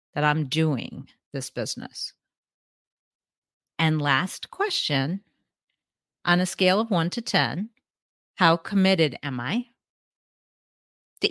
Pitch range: 145-190 Hz